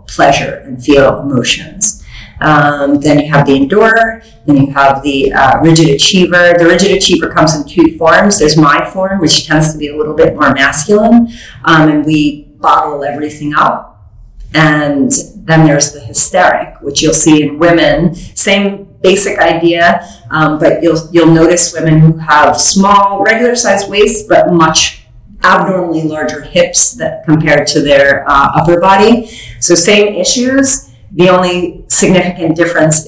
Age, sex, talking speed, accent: 40-59, female, 155 wpm, American